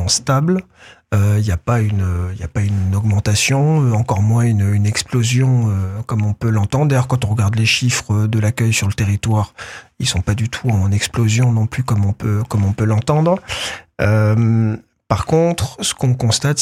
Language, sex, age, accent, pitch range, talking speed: French, male, 50-69, French, 105-135 Hz, 190 wpm